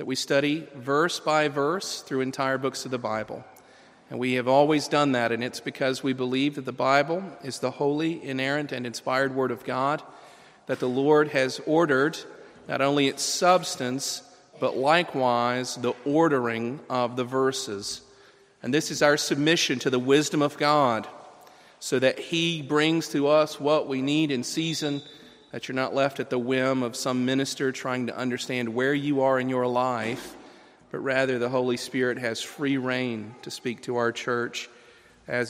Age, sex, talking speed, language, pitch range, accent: 40-59, male, 175 wpm, English, 120-145 Hz, American